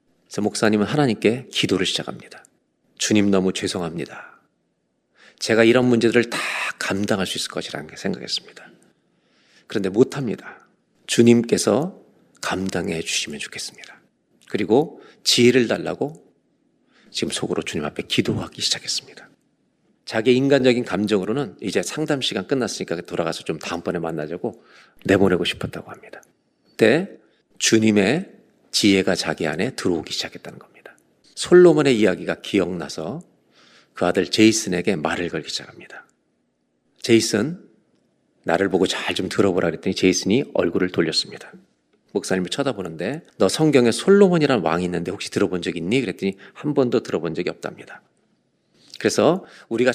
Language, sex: Korean, male